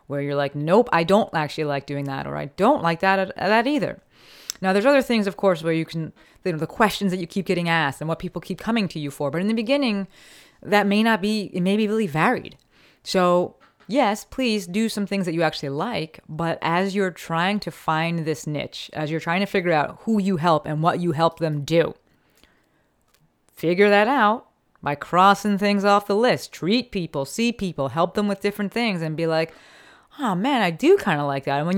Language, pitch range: English, 160-220 Hz